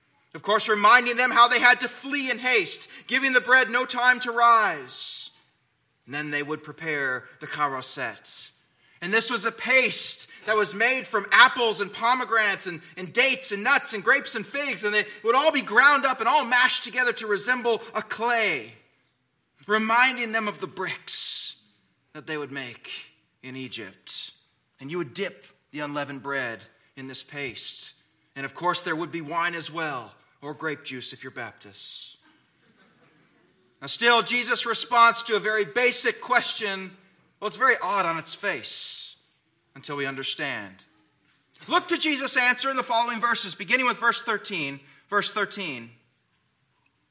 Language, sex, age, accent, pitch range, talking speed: English, male, 30-49, American, 165-255 Hz, 165 wpm